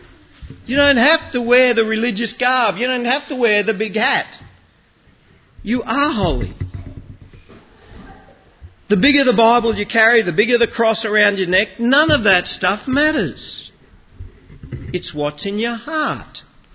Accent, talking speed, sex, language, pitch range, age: Australian, 150 wpm, male, English, 115-190 Hz, 50-69